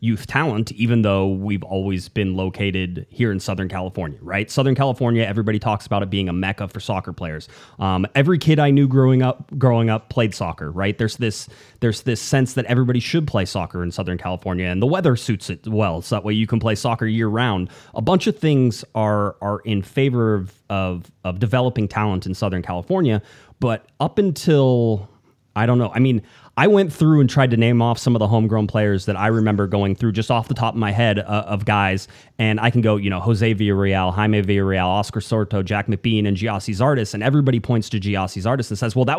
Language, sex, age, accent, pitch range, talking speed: English, male, 30-49, American, 100-125 Hz, 220 wpm